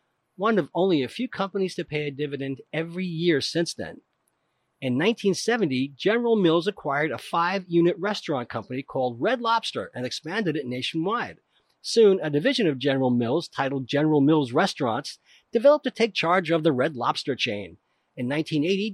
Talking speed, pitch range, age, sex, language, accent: 160 wpm, 140-195 Hz, 40-59, male, English, American